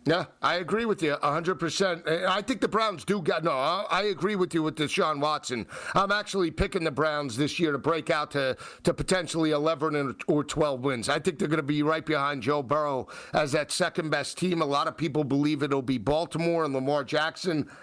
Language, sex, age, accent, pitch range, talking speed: English, male, 50-69, American, 155-195 Hz, 210 wpm